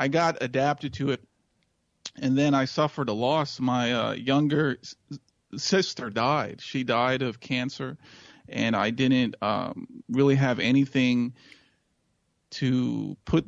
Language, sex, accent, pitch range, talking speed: English, male, American, 115-140 Hz, 135 wpm